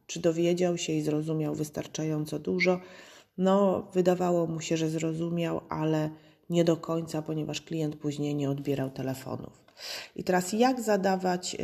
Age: 30-49